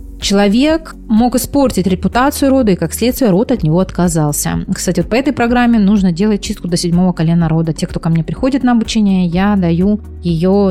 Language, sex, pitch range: Russian, female, 175-230 Hz